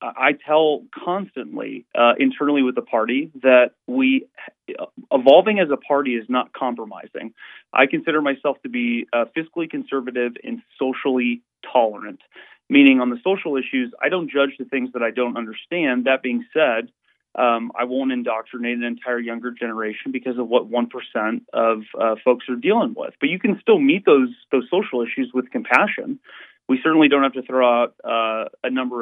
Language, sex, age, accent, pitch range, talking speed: English, male, 30-49, American, 120-170 Hz, 175 wpm